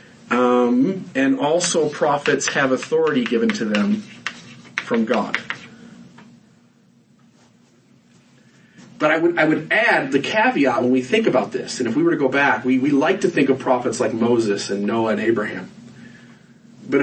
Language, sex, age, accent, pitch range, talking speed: English, male, 40-59, American, 125-195 Hz, 160 wpm